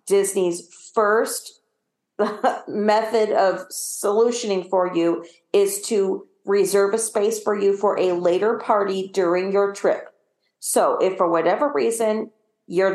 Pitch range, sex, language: 175-215 Hz, female, English